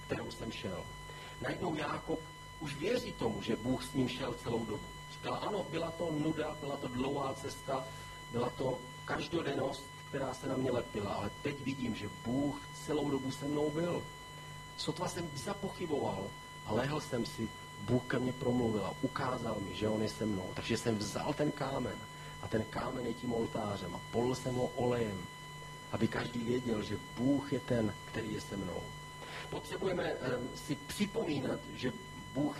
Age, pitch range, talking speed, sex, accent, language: 40-59, 125-145 Hz, 170 wpm, male, native, Czech